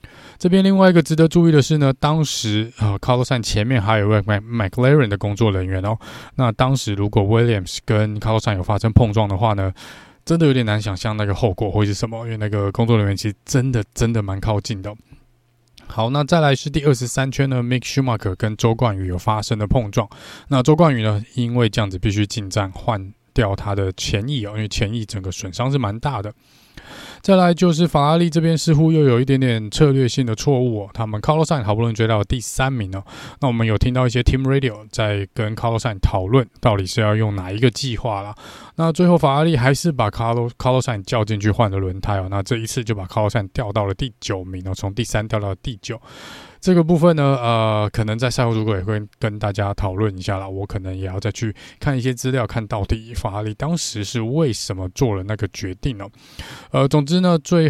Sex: male